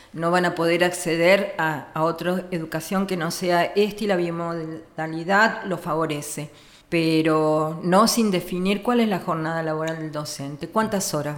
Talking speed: 165 wpm